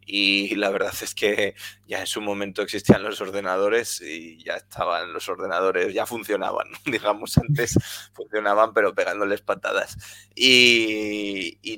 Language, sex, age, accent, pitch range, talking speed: Spanish, male, 20-39, Spanish, 100-135 Hz, 140 wpm